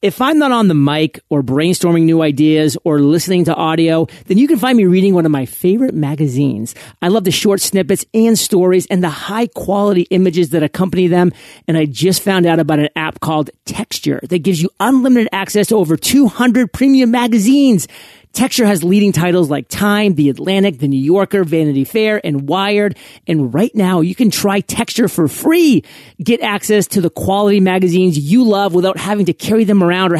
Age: 40-59